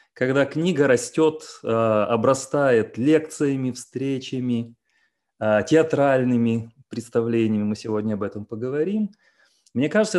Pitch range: 110-160 Hz